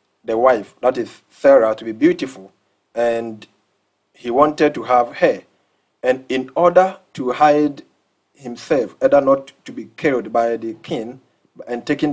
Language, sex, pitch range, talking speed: English, male, 120-160 Hz, 150 wpm